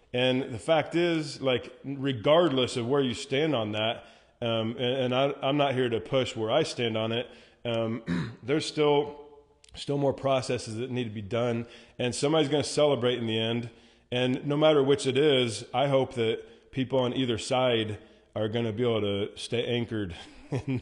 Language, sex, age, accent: English, male, 20-39, American